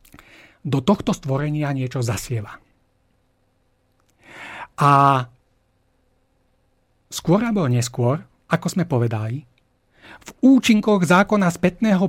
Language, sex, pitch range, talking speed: Slovak, male, 130-185 Hz, 80 wpm